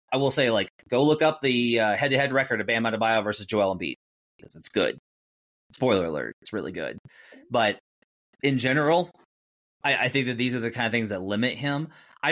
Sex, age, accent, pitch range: male, 30-49, American, 105-135 Hz